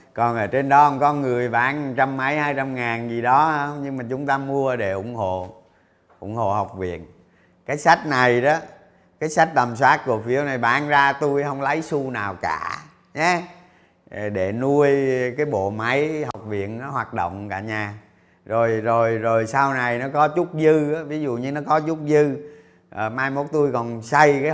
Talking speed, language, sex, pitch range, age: 205 wpm, Vietnamese, male, 105-145 Hz, 30-49